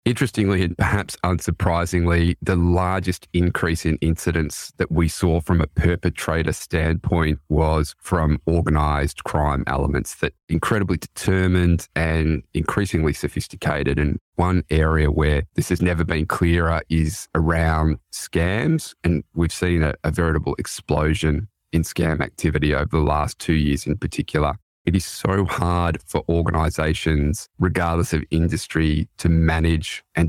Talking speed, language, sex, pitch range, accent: 135 wpm, English, male, 80-90 Hz, Australian